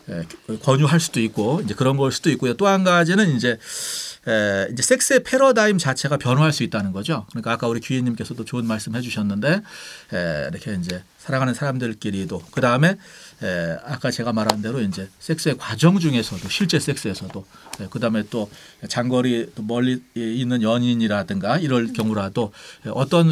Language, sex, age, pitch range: Korean, male, 40-59, 110-160 Hz